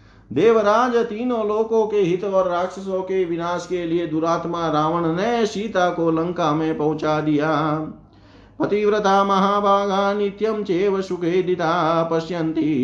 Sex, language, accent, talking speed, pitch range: male, Hindi, native, 115 wpm, 145-175 Hz